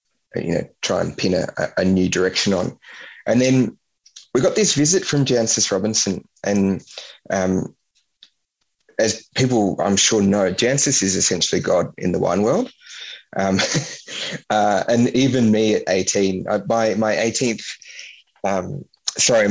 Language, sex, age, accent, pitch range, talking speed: English, male, 20-39, Australian, 95-120 Hz, 140 wpm